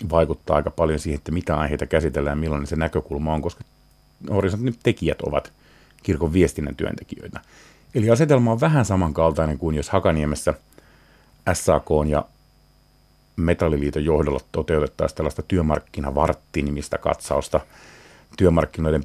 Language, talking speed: Finnish, 115 wpm